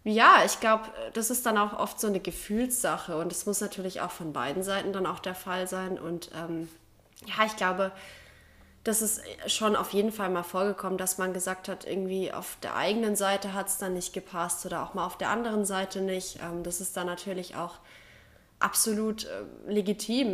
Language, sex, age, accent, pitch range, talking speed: German, female, 20-39, German, 175-205 Hz, 200 wpm